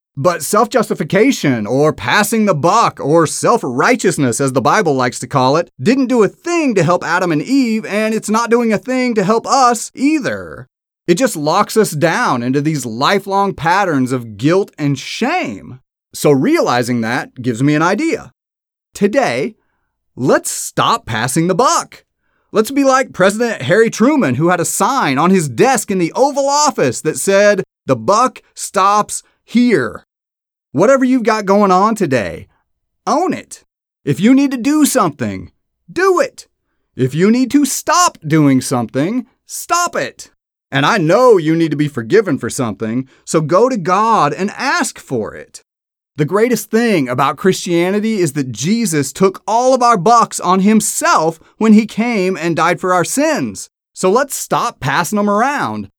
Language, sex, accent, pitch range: English, male, American, 150-235 Hz